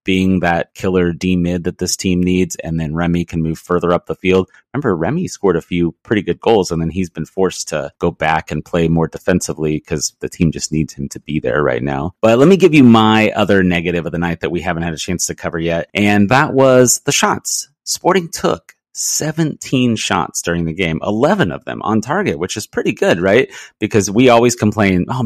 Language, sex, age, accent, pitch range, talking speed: English, male, 30-49, American, 85-105 Hz, 230 wpm